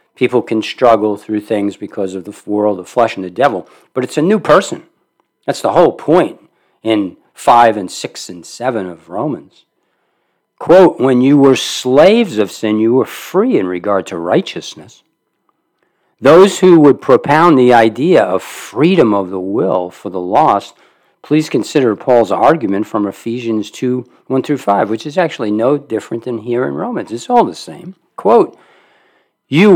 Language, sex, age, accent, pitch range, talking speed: English, male, 50-69, American, 100-125 Hz, 170 wpm